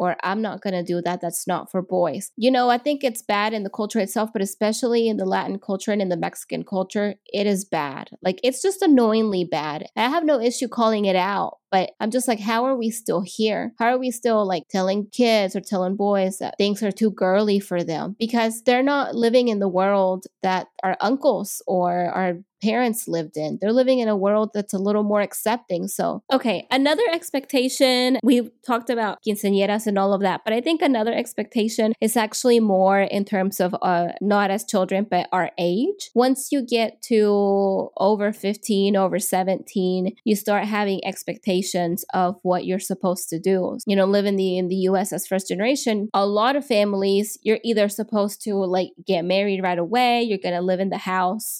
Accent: American